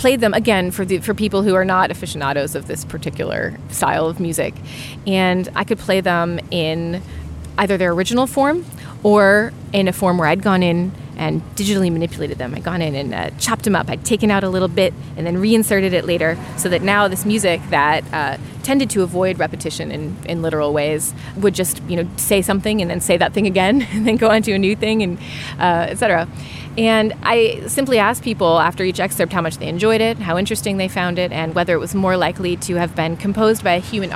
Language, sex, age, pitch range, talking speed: English, female, 30-49, 165-200 Hz, 225 wpm